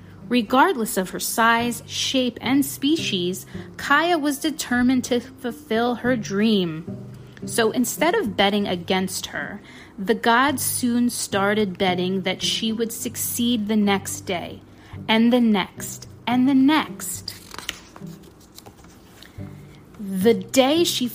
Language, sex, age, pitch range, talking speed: English, female, 30-49, 190-255 Hz, 115 wpm